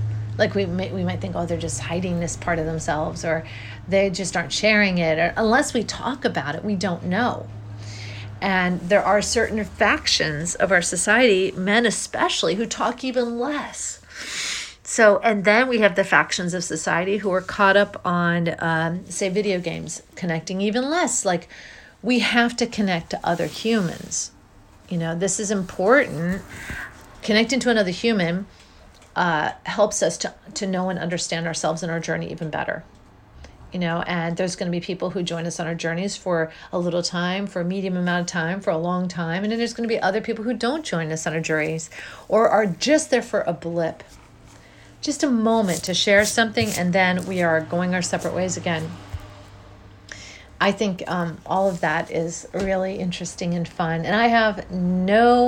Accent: American